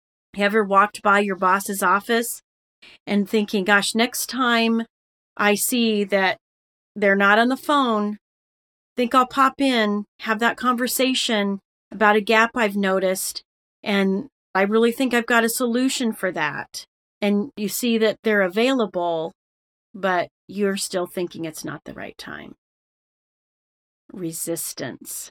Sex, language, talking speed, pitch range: female, English, 140 wpm, 190-240 Hz